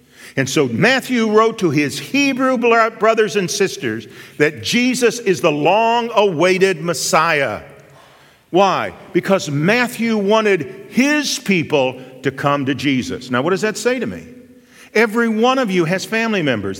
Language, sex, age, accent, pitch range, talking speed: English, male, 50-69, American, 175-245 Hz, 145 wpm